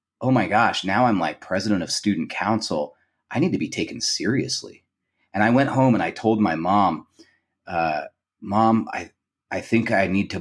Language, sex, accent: English, male, American